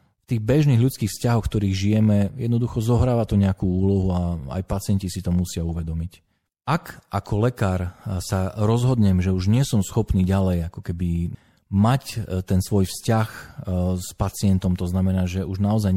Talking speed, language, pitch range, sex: 160 wpm, Slovak, 90-110 Hz, male